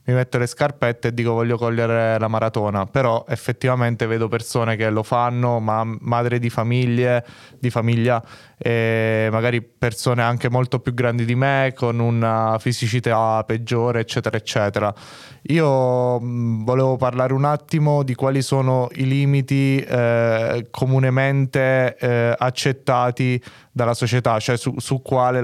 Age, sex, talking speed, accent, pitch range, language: 20-39, male, 140 wpm, native, 115-135 Hz, Italian